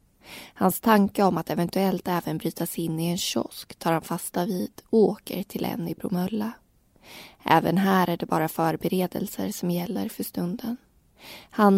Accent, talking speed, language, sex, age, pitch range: native, 165 wpm, Swedish, female, 20-39, 170-210 Hz